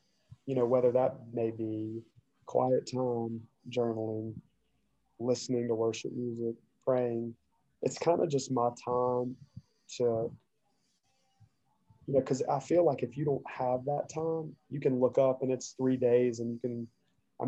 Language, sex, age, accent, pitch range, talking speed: English, male, 20-39, American, 120-130 Hz, 155 wpm